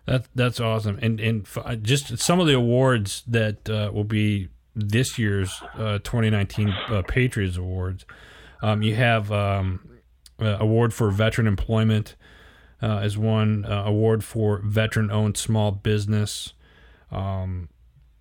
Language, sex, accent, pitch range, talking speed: English, male, American, 100-120 Hz, 140 wpm